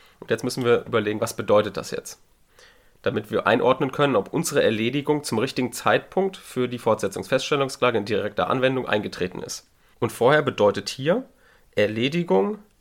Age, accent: 30-49, German